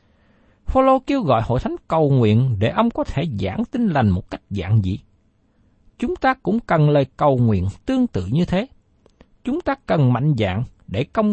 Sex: male